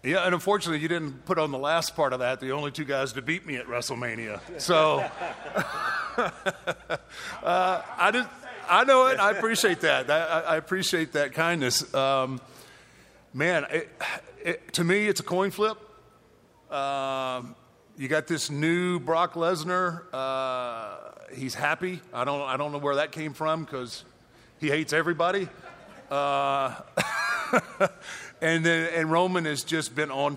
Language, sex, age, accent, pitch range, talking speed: English, male, 40-59, American, 130-160 Hz, 155 wpm